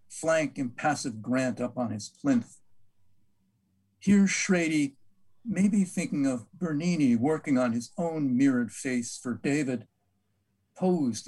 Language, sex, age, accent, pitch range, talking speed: English, male, 50-69, American, 115-165 Hz, 115 wpm